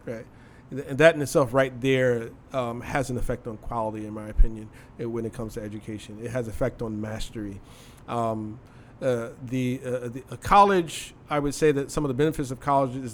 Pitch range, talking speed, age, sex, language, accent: 120-140 Hz, 195 wpm, 40-59, male, English, American